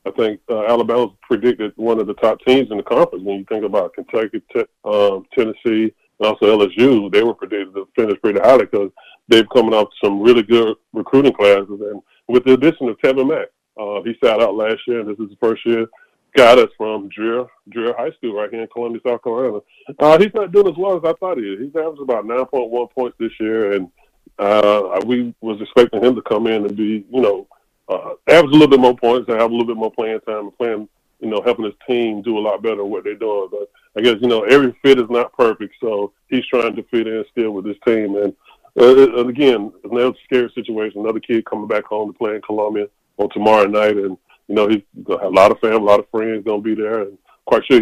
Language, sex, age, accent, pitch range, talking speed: English, female, 30-49, American, 105-135 Hz, 240 wpm